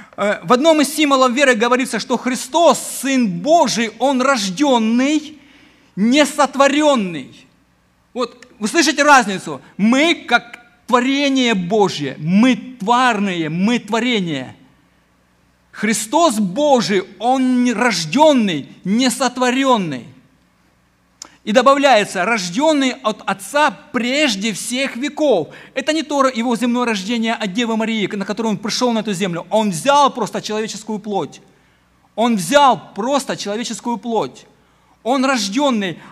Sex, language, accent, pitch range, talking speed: male, Ukrainian, native, 205-270 Hz, 110 wpm